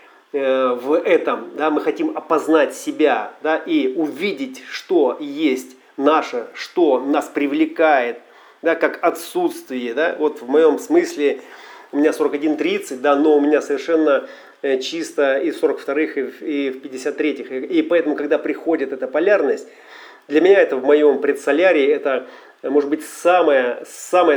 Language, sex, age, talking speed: Russian, male, 40-59, 140 wpm